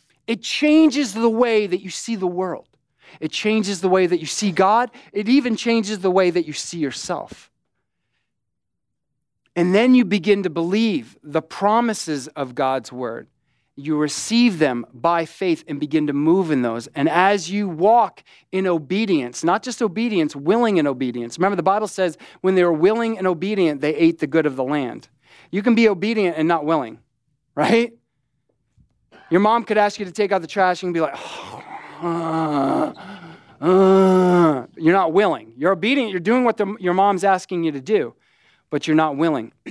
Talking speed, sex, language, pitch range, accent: 180 wpm, male, English, 150-200 Hz, American